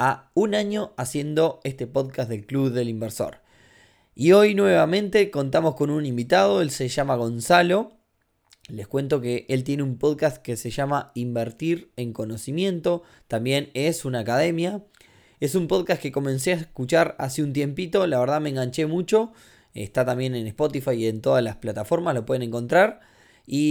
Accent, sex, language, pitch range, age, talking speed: Argentinian, male, Spanish, 120-160 Hz, 20-39, 165 wpm